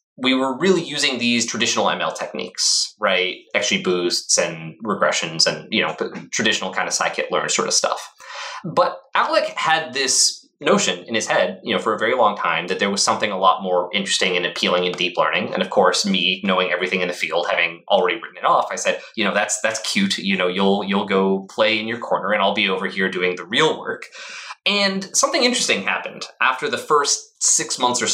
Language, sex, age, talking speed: English, male, 20-39, 215 wpm